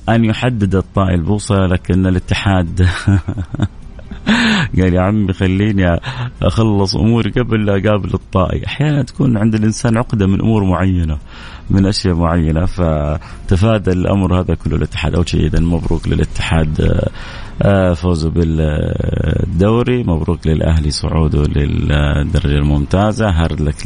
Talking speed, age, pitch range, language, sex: 115 wpm, 30-49, 85-110 Hz, Arabic, male